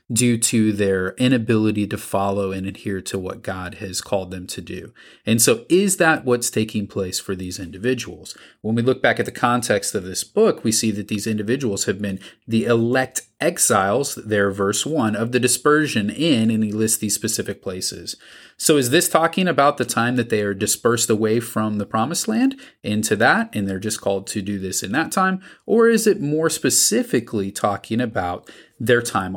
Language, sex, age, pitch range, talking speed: English, male, 30-49, 100-130 Hz, 195 wpm